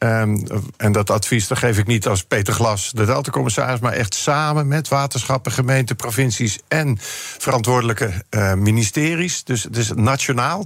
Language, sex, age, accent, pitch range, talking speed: Dutch, male, 50-69, Dutch, 110-145 Hz, 150 wpm